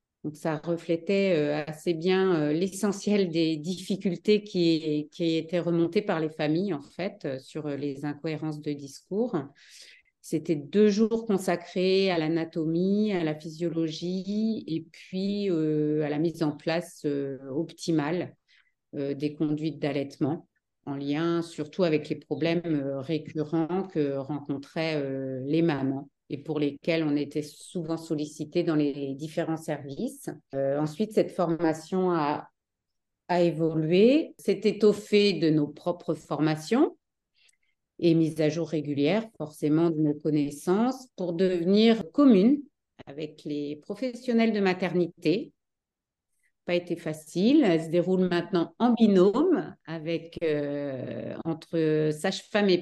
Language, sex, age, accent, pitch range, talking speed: French, female, 50-69, French, 150-190 Hz, 125 wpm